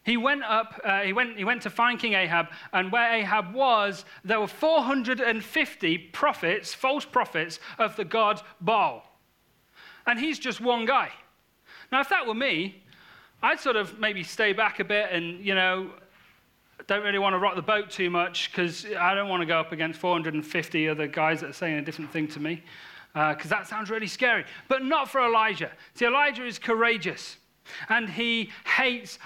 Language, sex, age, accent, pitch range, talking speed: English, male, 40-59, British, 180-235 Hz, 190 wpm